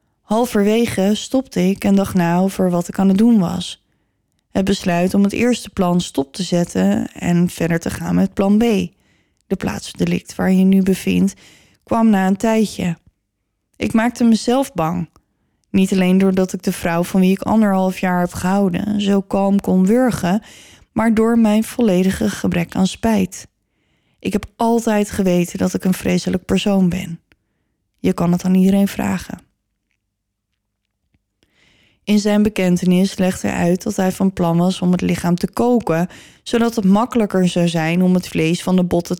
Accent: Dutch